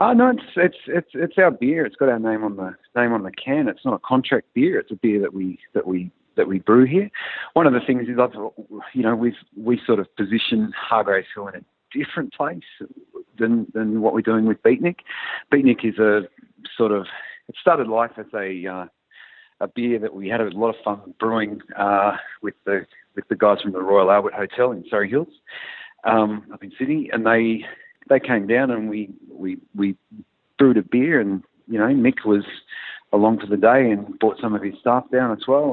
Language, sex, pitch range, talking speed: English, male, 105-135 Hz, 215 wpm